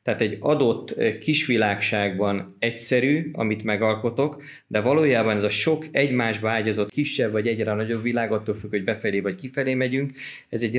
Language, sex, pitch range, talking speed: Hungarian, male, 105-125 Hz, 155 wpm